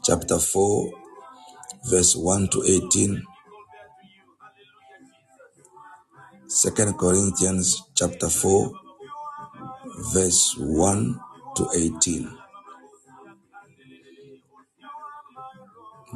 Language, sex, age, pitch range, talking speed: English, male, 50-69, 90-130 Hz, 40 wpm